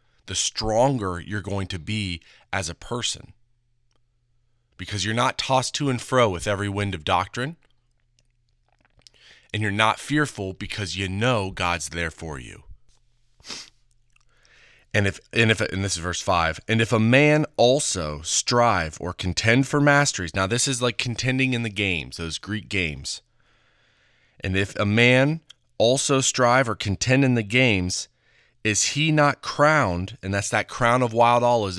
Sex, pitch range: male, 95-125 Hz